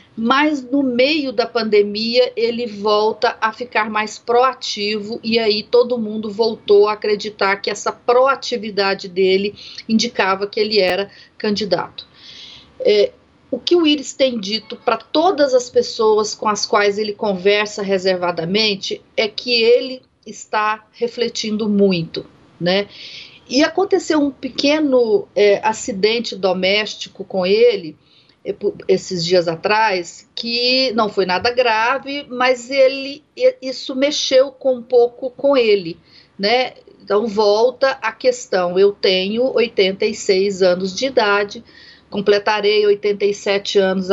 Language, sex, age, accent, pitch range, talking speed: Portuguese, female, 40-59, Brazilian, 205-255 Hz, 120 wpm